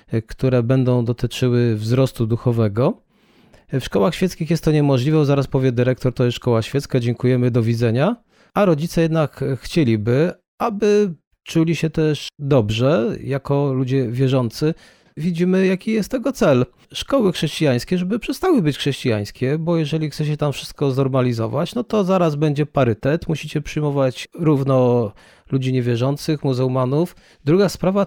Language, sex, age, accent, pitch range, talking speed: Polish, male, 40-59, native, 130-165 Hz, 135 wpm